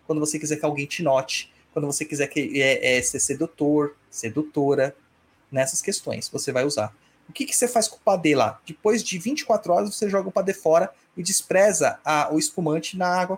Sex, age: male, 30-49